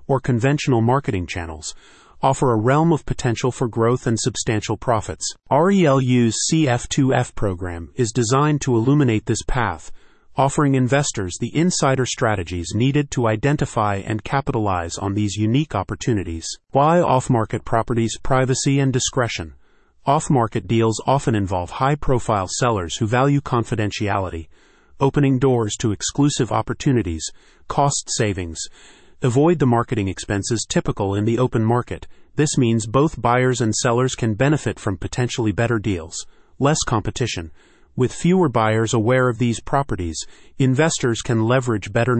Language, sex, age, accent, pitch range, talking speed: English, male, 30-49, American, 105-135 Hz, 130 wpm